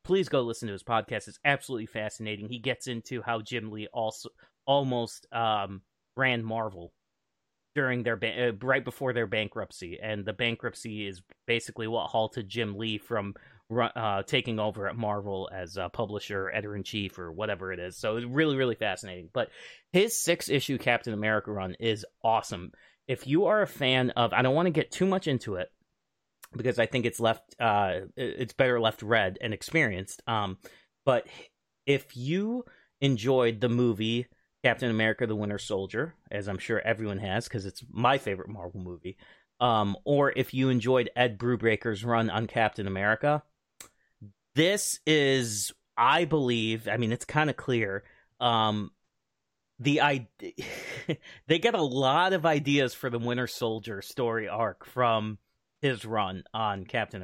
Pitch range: 105-130 Hz